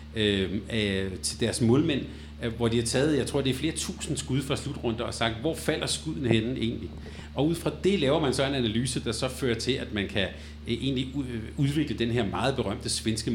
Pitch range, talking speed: 95-130 Hz, 205 wpm